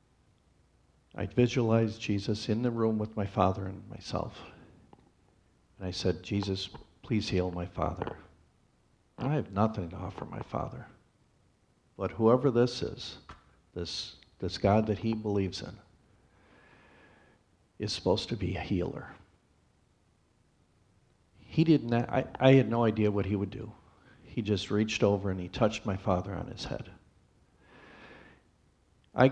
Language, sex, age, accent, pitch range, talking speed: English, male, 50-69, American, 95-115 Hz, 140 wpm